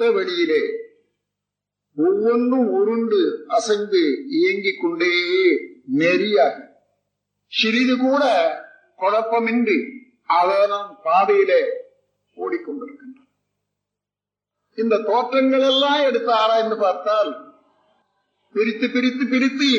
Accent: native